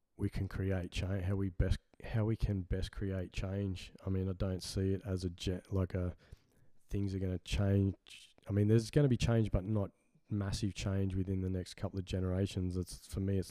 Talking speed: 225 wpm